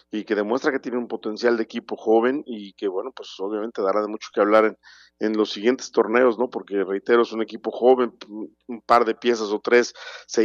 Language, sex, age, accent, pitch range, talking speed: Spanish, male, 50-69, Mexican, 105-120 Hz, 225 wpm